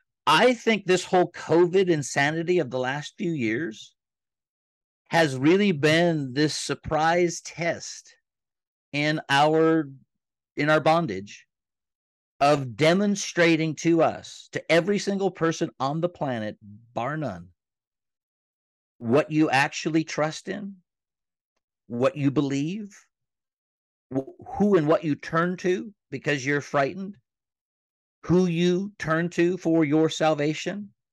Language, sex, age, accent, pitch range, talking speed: English, male, 50-69, American, 140-180 Hz, 115 wpm